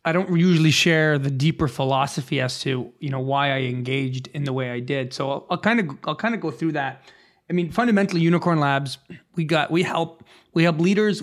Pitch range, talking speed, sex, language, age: 135-165 Hz, 220 wpm, male, English, 30-49